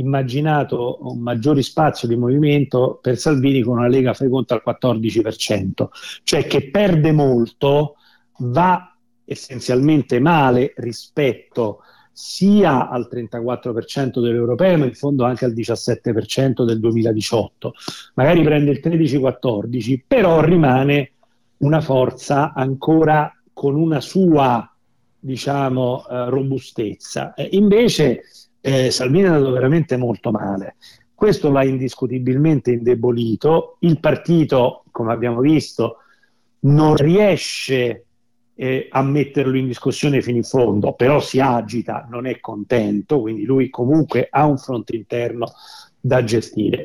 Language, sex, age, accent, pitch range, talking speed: Italian, male, 40-59, native, 120-150 Hz, 115 wpm